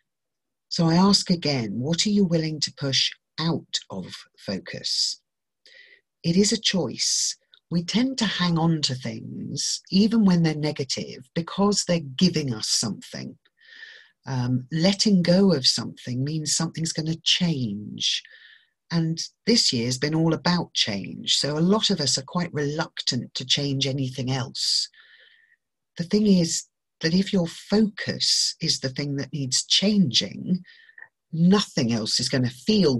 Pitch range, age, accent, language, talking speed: 140-200 Hz, 40-59, British, English, 150 wpm